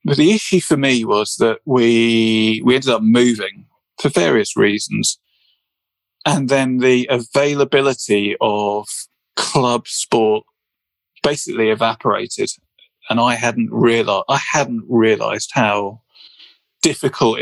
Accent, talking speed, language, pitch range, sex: British, 115 wpm, English, 110-135 Hz, male